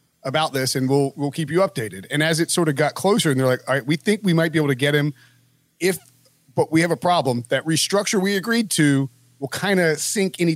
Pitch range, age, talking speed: 135-170 Hz, 30-49, 255 wpm